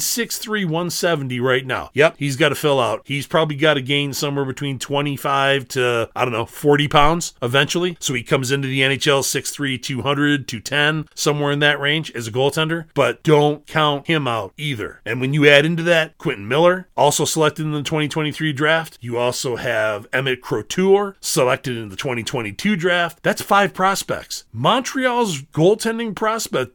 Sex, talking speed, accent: male, 175 wpm, American